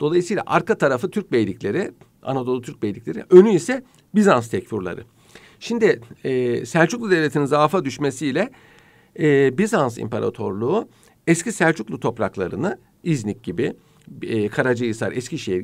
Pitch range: 120-175 Hz